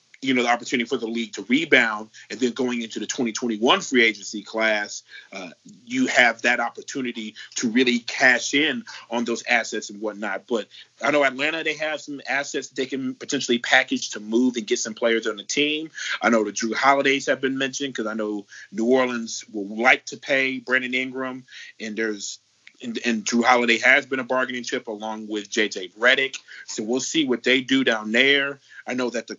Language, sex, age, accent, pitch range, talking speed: English, male, 30-49, American, 115-140 Hz, 200 wpm